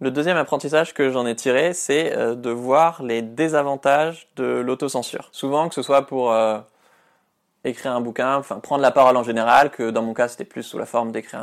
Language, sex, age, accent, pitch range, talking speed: French, male, 20-39, French, 115-135 Hz, 205 wpm